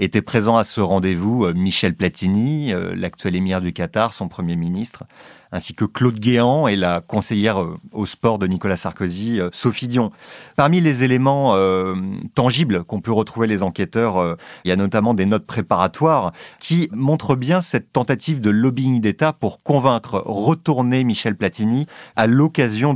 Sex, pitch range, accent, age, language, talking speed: male, 100-130 Hz, French, 30-49, French, 160 wpm